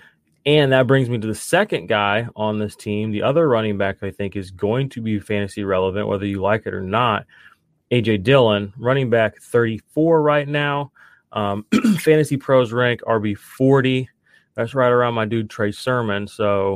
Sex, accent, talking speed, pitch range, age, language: male, American, 180 wpm, 105-130 Hz, 30-49, English